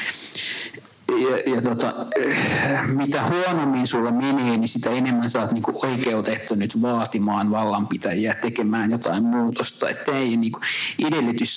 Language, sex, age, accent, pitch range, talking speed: Finnish, male, 50-69, native, 115-145 Hz, 130 wpm